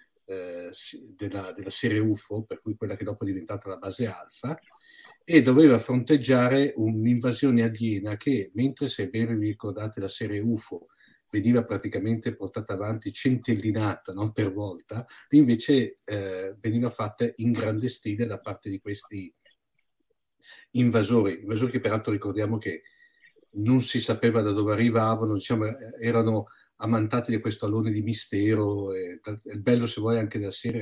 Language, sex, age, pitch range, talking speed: Italian, male, 50-69, 105-120 Hz, 150 wpm